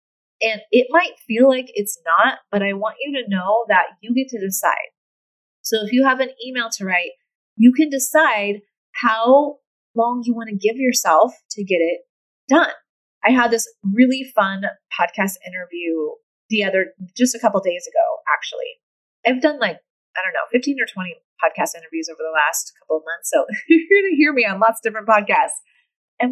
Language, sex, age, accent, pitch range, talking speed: English, female, 30-49, American, 185-255 Hz, 195 wpm